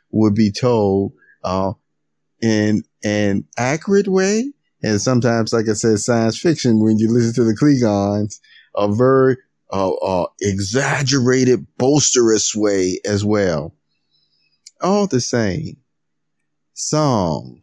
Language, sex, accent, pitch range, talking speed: English, male, American, 95-130 Hz, 115 wpm